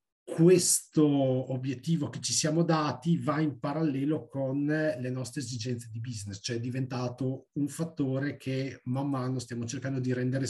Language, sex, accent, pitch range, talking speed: Italian, male, native, 110-145 Hz, 155 wpm